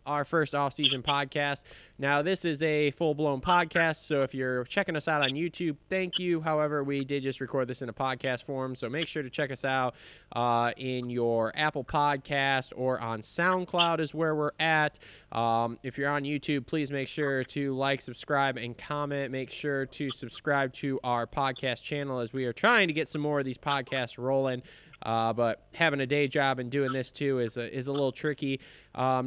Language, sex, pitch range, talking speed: English, male, 130-160 Hz, 200 wpm